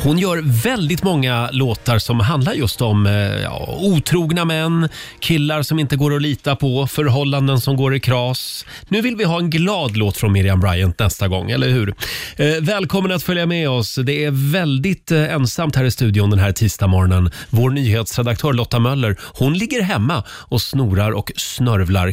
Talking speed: 175 wpm